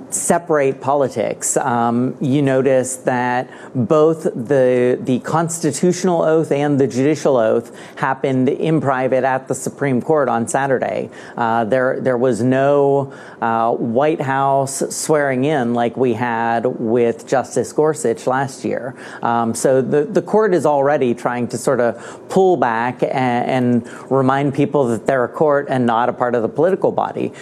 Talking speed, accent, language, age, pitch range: 155 wpm, American, English, 40-59, 130-150 Hz